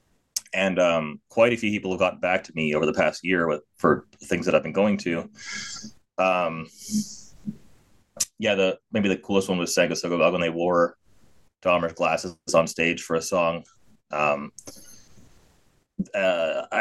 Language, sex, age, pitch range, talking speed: English, male, 30-49, 85-100 Hz, 160 wpm